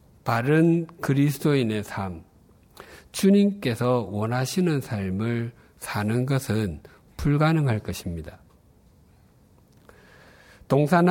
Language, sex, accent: Korean, male, native